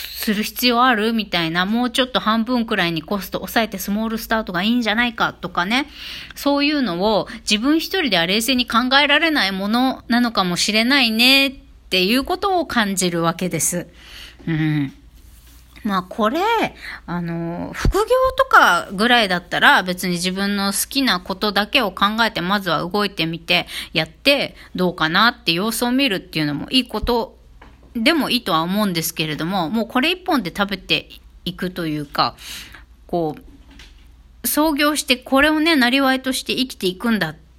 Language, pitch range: Japanese, 170-255 Hz